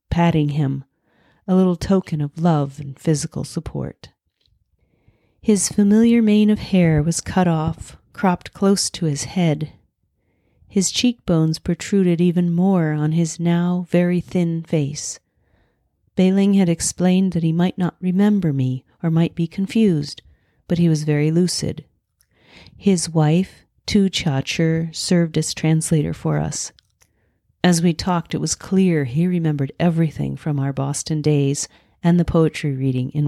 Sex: female